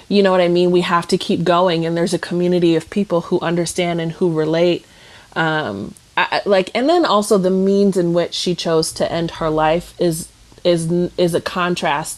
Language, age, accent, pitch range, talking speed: English, 30-49, American, 160-180 Hz, 200 wpm